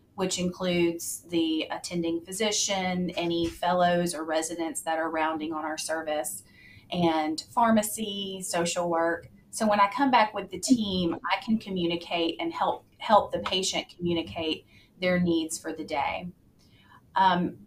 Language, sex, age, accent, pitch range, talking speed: English, female, 30-49, American, 165-195 Hz, 145 wpm